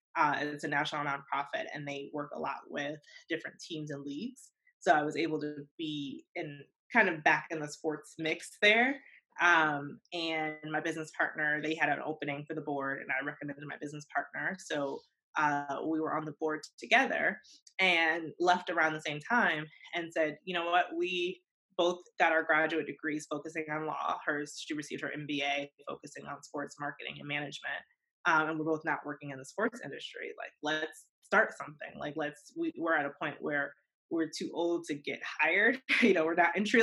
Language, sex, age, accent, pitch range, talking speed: English, female, 20-39, American, 150-180 Hz, 195 wpm